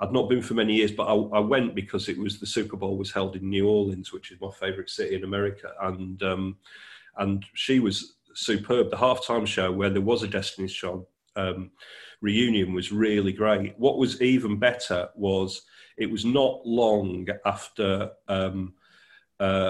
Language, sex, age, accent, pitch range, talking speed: English, male, 40-59, British, 95-105 Hz, 180 wpm